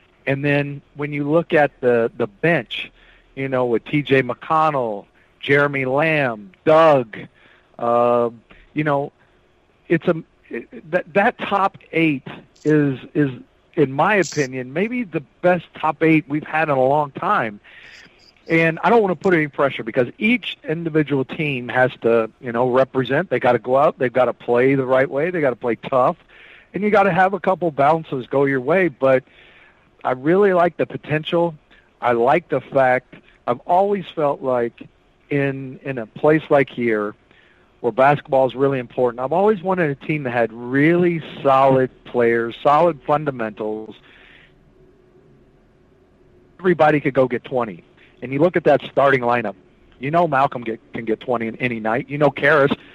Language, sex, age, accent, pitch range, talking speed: English, male, 50-69, American, 125-160 Hz, 170 wpm